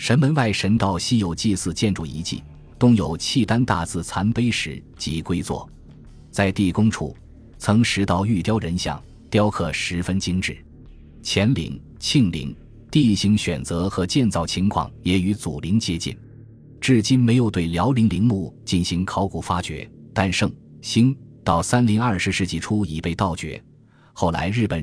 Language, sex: Chinese, male